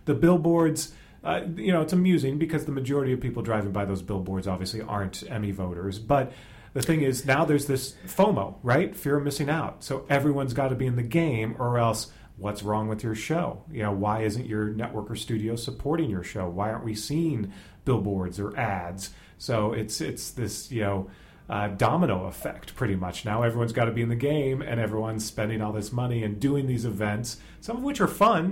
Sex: male